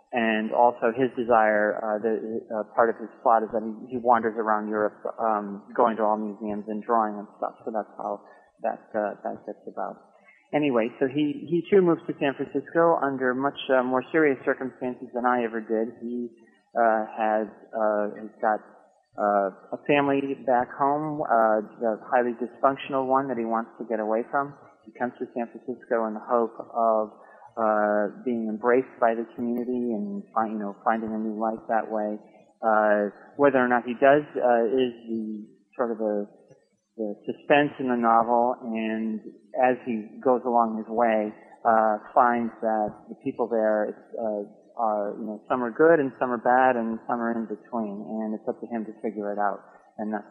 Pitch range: 110-125 Hz